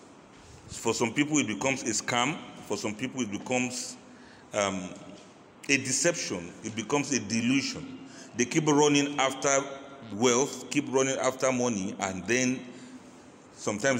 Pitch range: 115-145 Hz